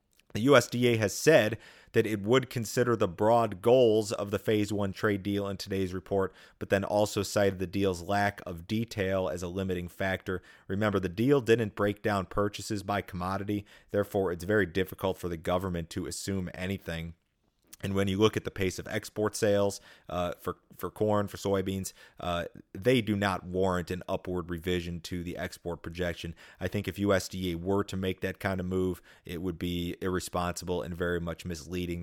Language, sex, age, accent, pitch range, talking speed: English, male, 30-49, American, 90-105 Hz, 185 wpm